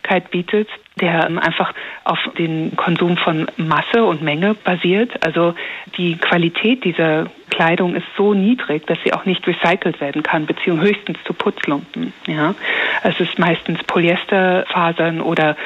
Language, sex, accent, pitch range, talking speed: German, female, German, 165-195 Hz, 140 wpm